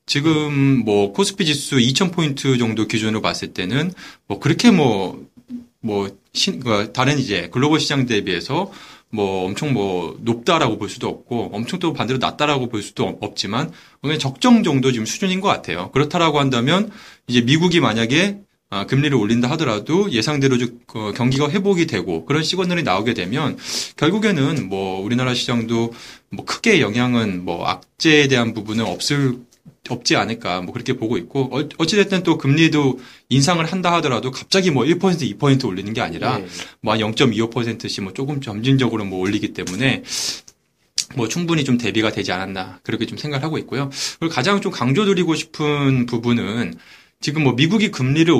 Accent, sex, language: native, male, Korean